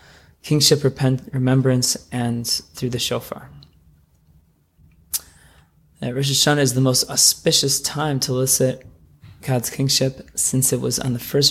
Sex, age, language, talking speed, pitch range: male, 20-39, English, 125 wpm, 125-140 Hz